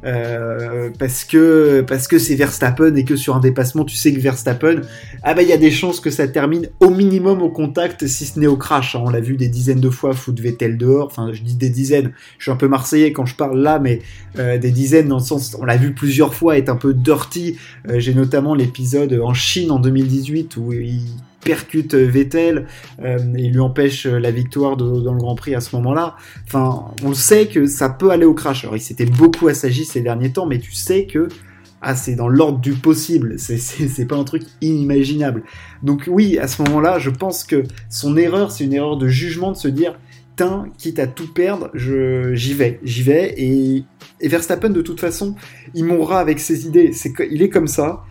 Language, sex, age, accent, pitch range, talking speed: French, male, 20-39, French, 125-155 Hz, 225 wpm